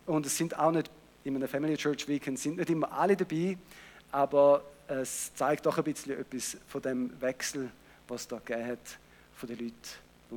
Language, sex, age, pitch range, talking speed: German, male, 50-69, 140-175 Hz, 190 wpm